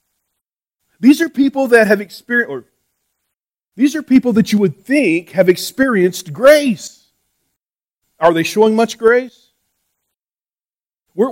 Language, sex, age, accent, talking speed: English, male, 40-59, American, 115 wpm